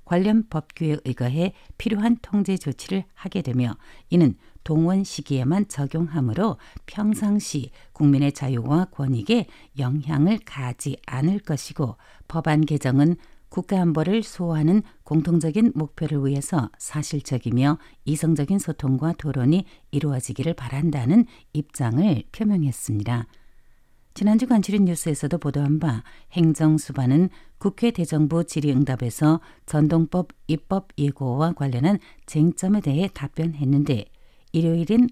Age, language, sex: 60-79, Korean, female